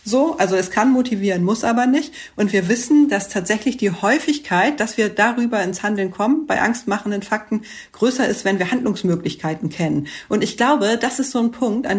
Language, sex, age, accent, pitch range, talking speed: German, female, 40-59, German, 190-240 Hz, 195 wpm